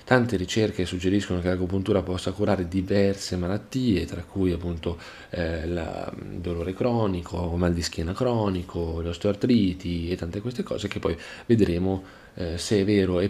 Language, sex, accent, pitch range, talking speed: Italian, male, native, 85-100 Hz, 155 wpm